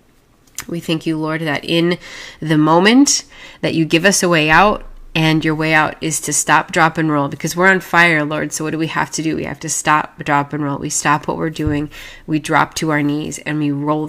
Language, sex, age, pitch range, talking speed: English, female, 20-39, 145-165 Hz, 245 wpm